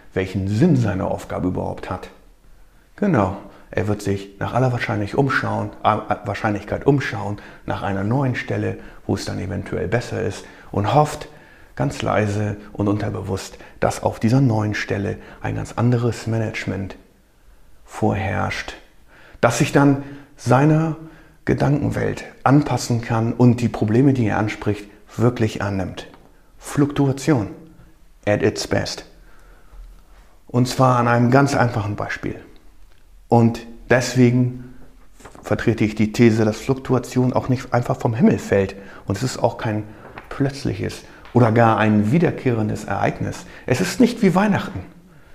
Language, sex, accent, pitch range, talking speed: German, male, German, 105-130 Hz, 130 wpm